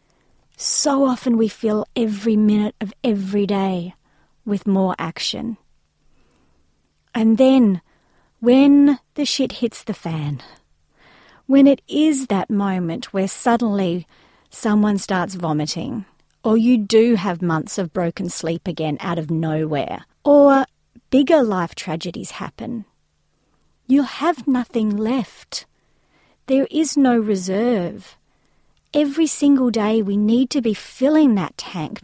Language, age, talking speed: English, 40-59, 120 wpm